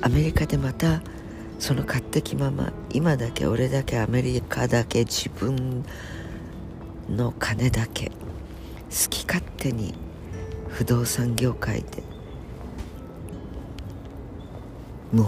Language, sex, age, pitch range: Japanese, female, 50-69, 100-145 Hz